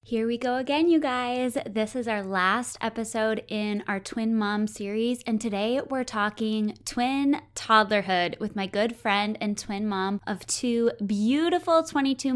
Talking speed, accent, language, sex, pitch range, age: 160 wpm, American, English, female, 200-245 Hz, 20-39